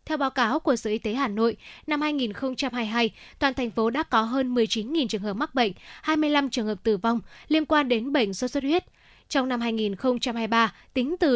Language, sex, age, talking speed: Vietnamese, female, 10-29, 210 wpm